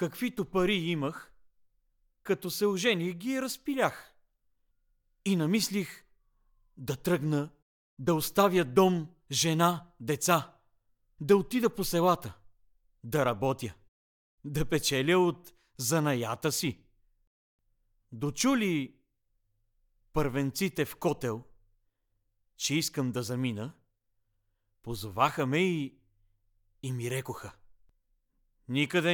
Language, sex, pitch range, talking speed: Bulgarian, male, 105-175 Hz, 90 wpm